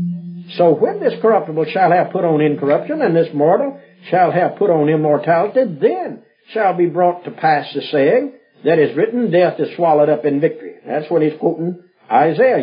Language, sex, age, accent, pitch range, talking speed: English, male, 60-79, American, 165-255 Hz, 185 wpm